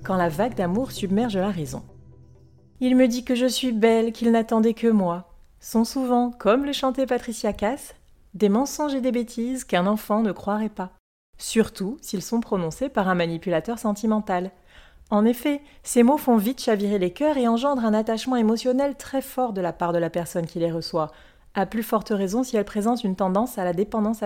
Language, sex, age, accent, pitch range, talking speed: French, female, 30-49, French, 200-250 Hz, 205 wpm